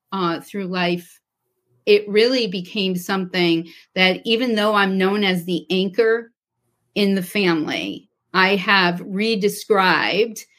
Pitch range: 175-225 Hz